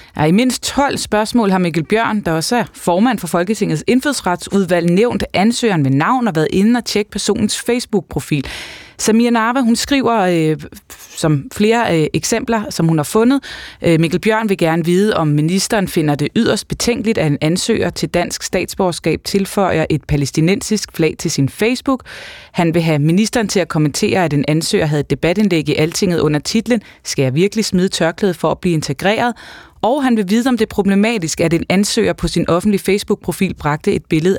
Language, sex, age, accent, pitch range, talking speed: Danish, female, 20-39, native, 160-215 Hz, 180 wpm